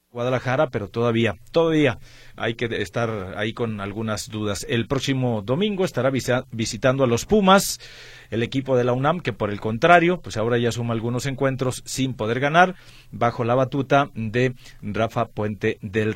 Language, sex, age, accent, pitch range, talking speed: Spanish, male, 40-59, Mexican, 120-175 Hz, 165 wpm